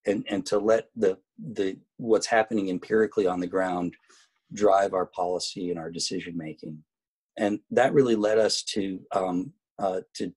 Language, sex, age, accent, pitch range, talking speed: English, male, 40-59, American, 85-105 Hz, 160 wpm